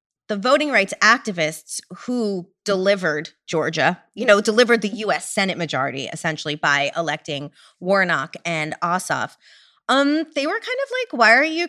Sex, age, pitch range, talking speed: female, 30-49, 170-230 Hz, 150 wpm